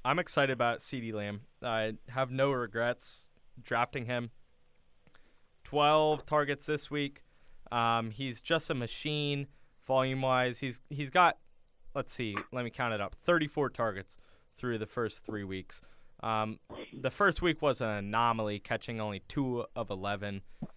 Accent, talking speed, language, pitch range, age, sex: American, 145 wpm, English, 110-135 Hz, 20-39, male